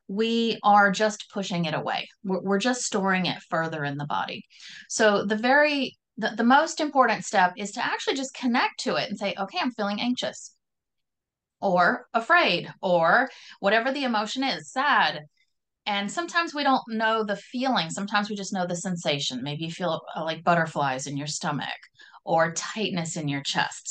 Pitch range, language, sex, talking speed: 185-255 Hz, English, female, 175 wpm